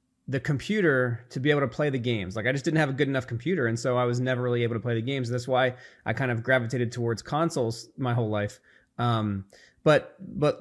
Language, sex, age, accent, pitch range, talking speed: English, male, 20-39, American, 115-135 Hz, 245 wpm